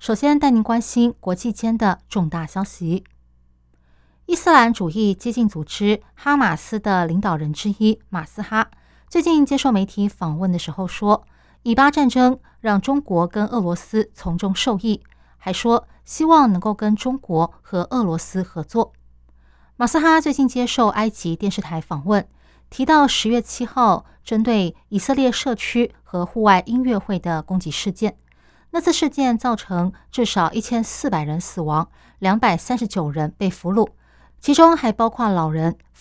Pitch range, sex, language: 180-240 Hz, female, Chinese